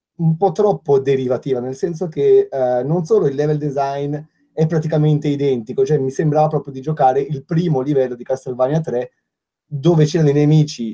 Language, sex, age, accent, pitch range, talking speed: Italian, male, 30-49, native, 130-165 Hz, 175 wpm